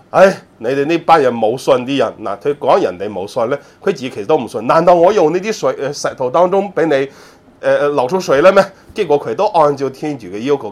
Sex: male